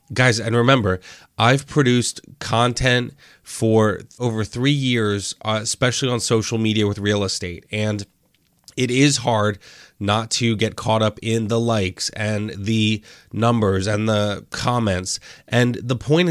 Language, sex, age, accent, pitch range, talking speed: English, male, 30-49, American, 105-125 Hz, 140 wpm